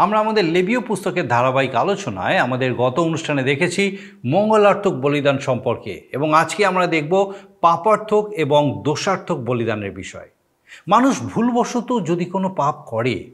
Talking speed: 125 wpm